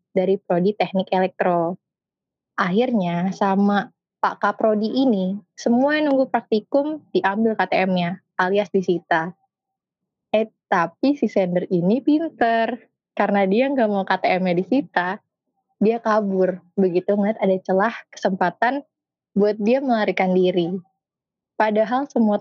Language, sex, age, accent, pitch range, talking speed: Indonesian, female, 20-39, native, 185-230 Hz, 110 wpm